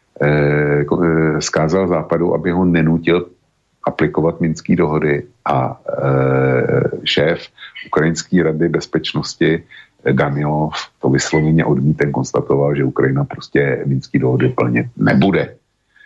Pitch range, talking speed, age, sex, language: 70-85 Hz, 95 wpm, 60-79, male, Slovak